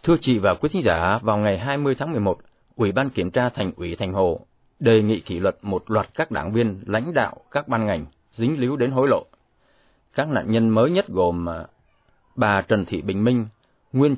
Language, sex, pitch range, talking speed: Vietnamese, male, 95-125 Hz, 210 wpm